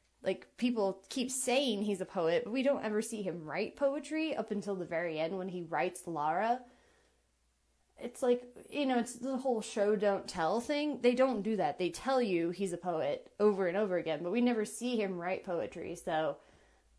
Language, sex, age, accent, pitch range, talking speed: English, female, 20-39, American, 180-230 Hz, 195 wpm